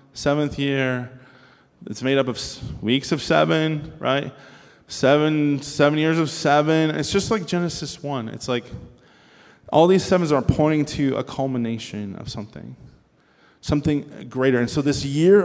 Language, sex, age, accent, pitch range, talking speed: English, male, 20-39, American, 125-170 Hz, 150 wpm